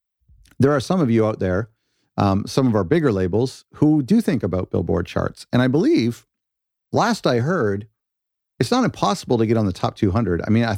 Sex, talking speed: male, 205 wpm